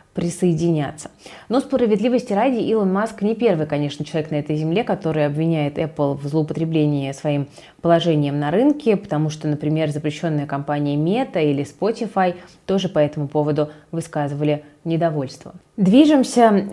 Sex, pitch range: female, 155-200 Hz